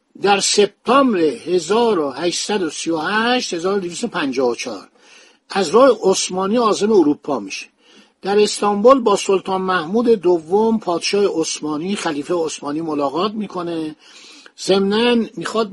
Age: 50-69